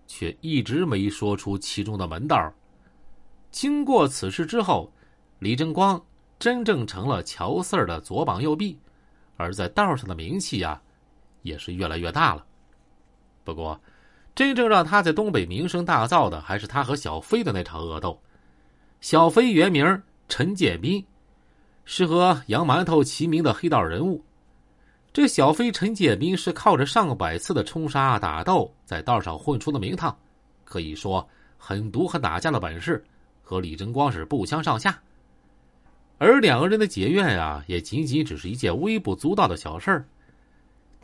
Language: Chinese